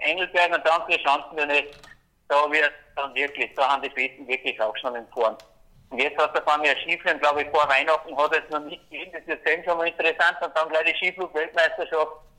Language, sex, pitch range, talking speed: German, male, 150-185 Hz, 225 wpm